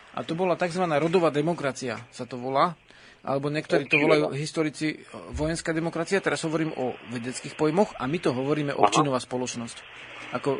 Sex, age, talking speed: male, 40-59, 160 wpm